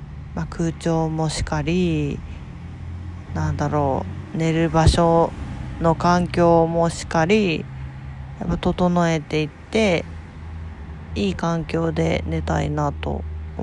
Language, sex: Japanese, female